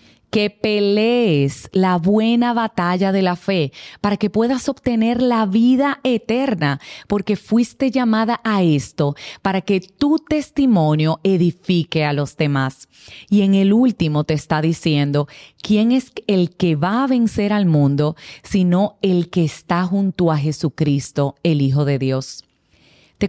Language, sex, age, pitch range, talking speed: Spanish, female, 30-49, 150-220 Hz, 145 wpm